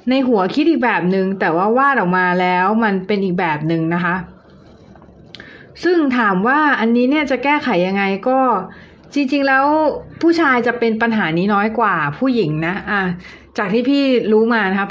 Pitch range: 185-235 Hz